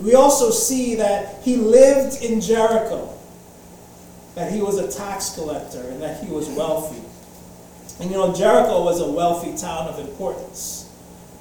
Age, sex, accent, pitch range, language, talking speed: 30-49, male, American, 175-225 Hz, English, 155 wpm